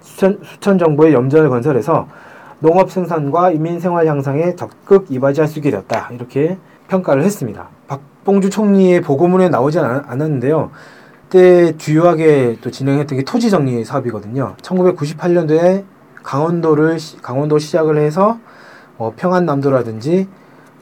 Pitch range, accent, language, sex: 130-175 Hz, native, Korean, male